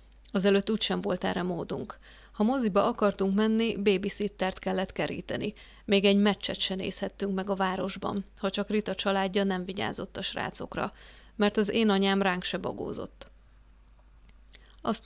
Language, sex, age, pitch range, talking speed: English, female, 30-49, 190-210 Hz, 145 wpm